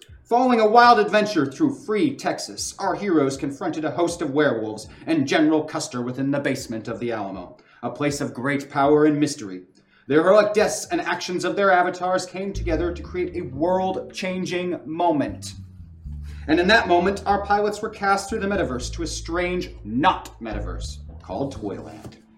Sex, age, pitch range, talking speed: male, 30-49, 115-185 Hz, 165 wpm